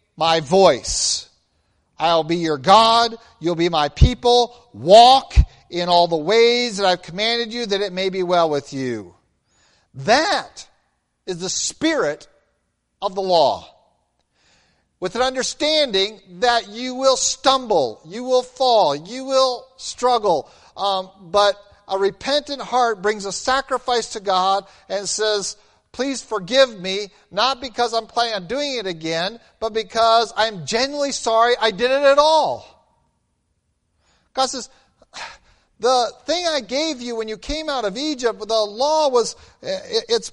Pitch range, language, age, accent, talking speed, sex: 195-265 Hz, English, 50-69, American, 145 wpm, male